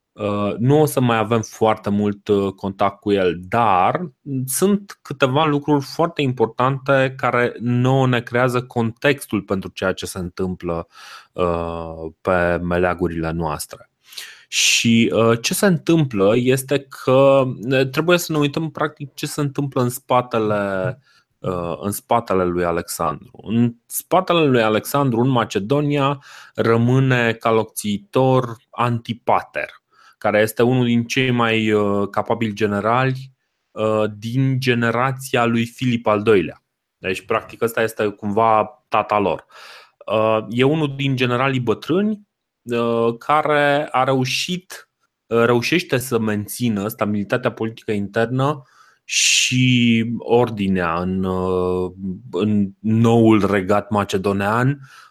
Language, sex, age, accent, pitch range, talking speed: Romanian, male, 20-39, native, 105-135 Hz, 115 wpm